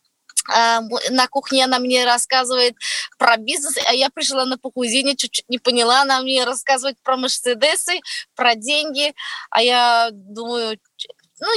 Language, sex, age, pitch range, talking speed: Russian, female, 20-39, 250-295 Hz, 135 wpm